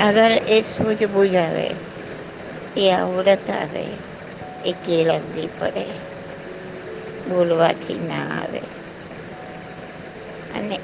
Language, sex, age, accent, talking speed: Gujarati, female, 60-79, American, 80 wpm